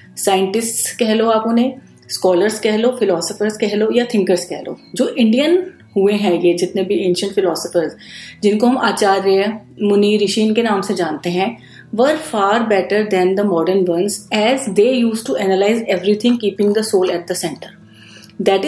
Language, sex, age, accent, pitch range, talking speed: Hindi, female, 30-49, native, 185-230 Hz, 175 wpm